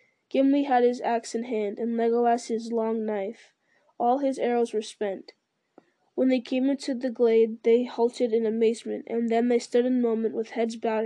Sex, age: female, 10-29